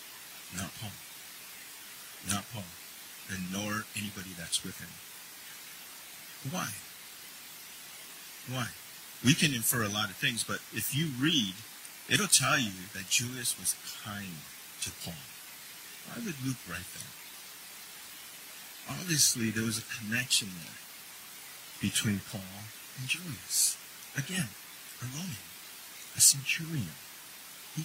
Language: English